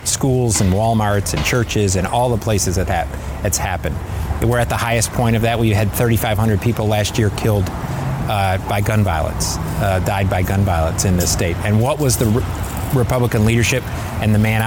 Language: English